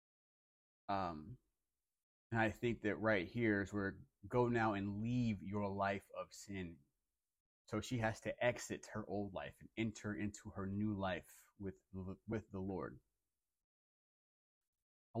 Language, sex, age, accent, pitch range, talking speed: English, male, 30-49, American, 100-120 Hz, 140 wpm